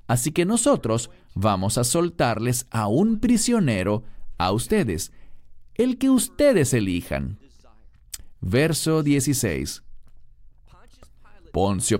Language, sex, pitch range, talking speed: English, male, 110-155 Hz, 90 wpm